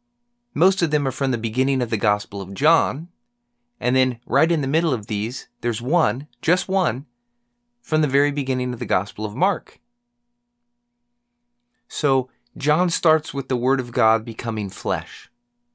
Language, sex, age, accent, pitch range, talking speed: English, male, 30-49, American, 120-175 Hz, 165 wpm